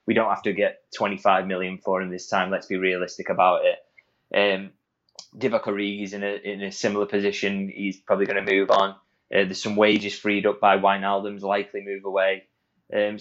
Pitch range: 100-110 Hz